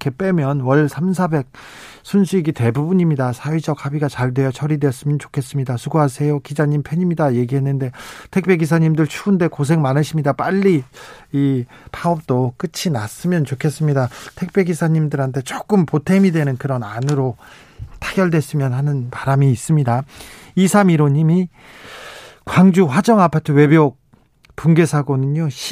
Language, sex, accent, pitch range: Korean, male, native, 135-185 Hz